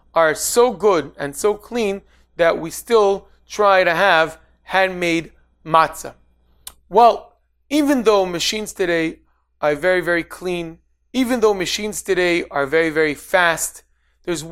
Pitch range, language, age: 165-215 Hz, English, 30-49